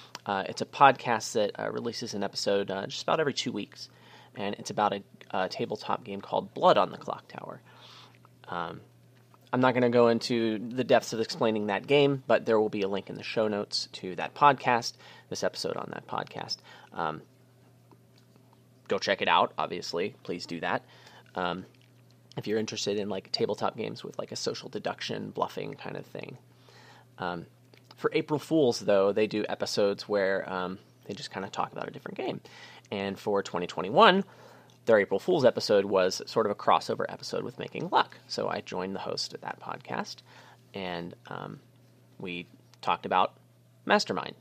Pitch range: 95-125 Hz